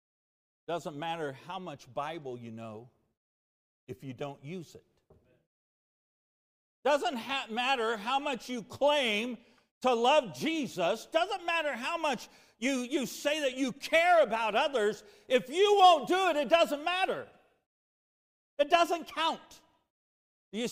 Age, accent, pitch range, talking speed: 50-69, American, 205-310 Hz, 135 wpm